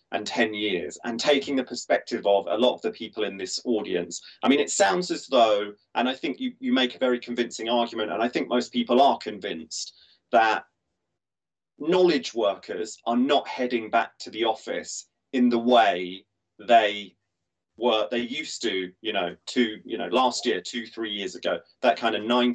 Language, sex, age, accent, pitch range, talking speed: English, male, 30-49, British, 85-125 Hz, 190 wpm